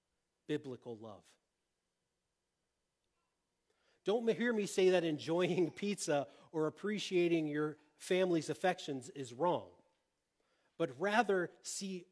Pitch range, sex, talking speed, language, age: 130-180 Hz, male, 95 wpm, English, 40-59